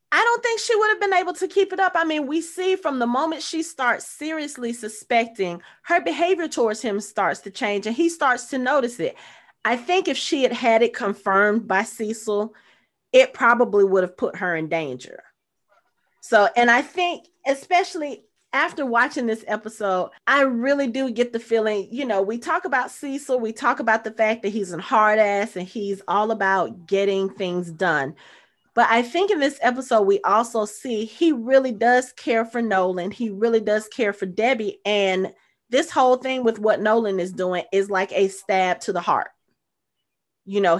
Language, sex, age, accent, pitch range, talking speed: English, female, 30-49, American, 195-275 Hz, 195 wpm